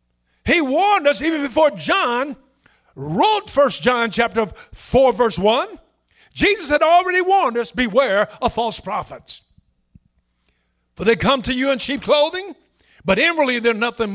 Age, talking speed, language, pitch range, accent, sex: 50-69, 145 wpm, English, 220-315 Hz, American, male